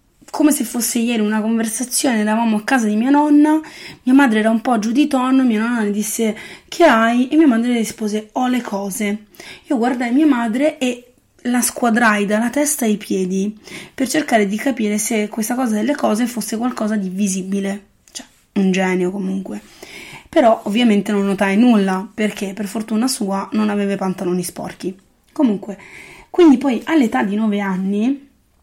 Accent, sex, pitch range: native, female, 205-245 Hz